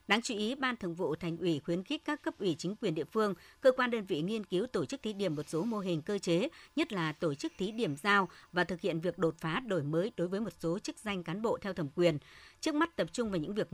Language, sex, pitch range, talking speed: Vietnamese, male, 165-225 Hz, 290 wpm